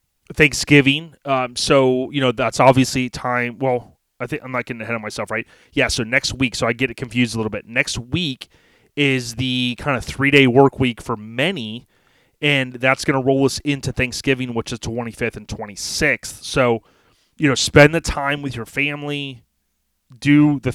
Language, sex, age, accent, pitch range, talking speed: English, male, 30-49, American, 120-135 Hz, 190 wpm